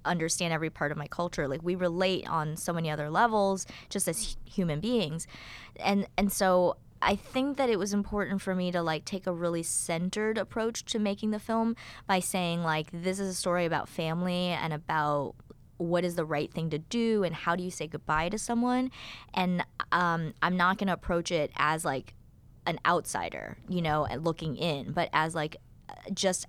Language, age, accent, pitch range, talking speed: English, 20-39, American, 160-195 Hz, 195 wpm